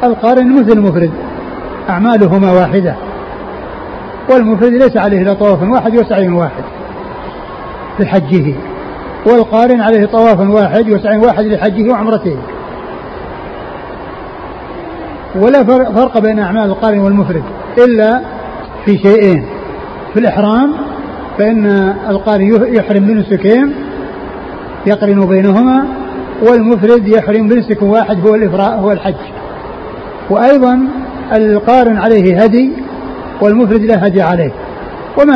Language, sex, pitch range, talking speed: Arabic, male, 195-230 Hz, 90 wpm